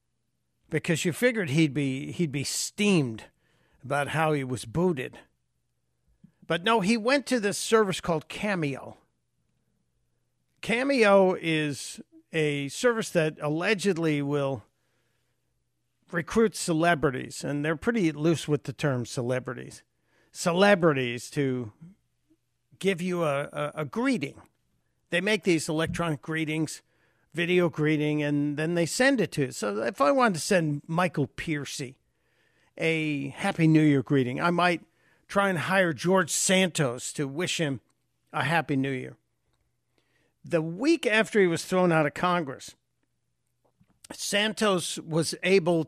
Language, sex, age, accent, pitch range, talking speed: English, male, 60-79, American, 145-195 Hz, 130 wpm